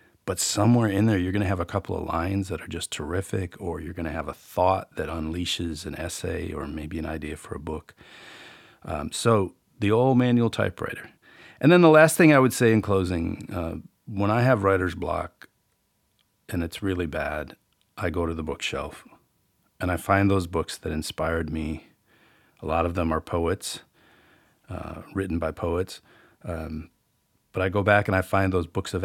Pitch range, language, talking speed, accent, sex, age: 85-100 Hz, English, 195 wpm, American, male, 40-59